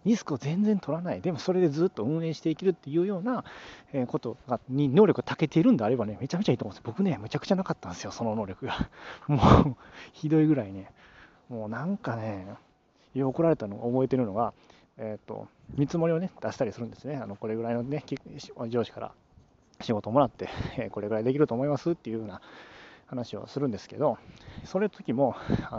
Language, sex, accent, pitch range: Japanese, male, native, 115-175 Hz